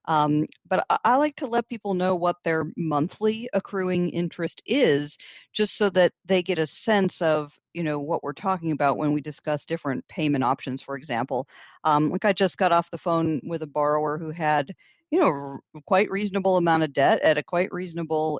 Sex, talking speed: female, 200 wpm